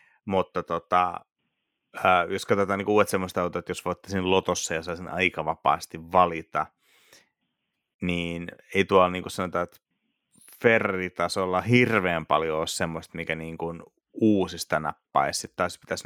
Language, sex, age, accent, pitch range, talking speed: Finnish, male, 30-49, native, 85-95 Hz, 140 wpm